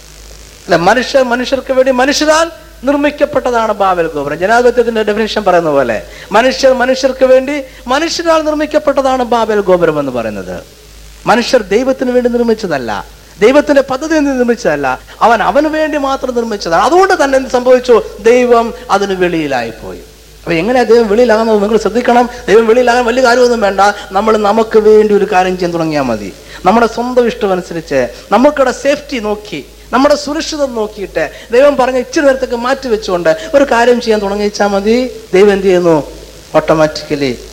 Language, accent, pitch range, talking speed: Malayalam, native, 195-270 Hz, 135 wpm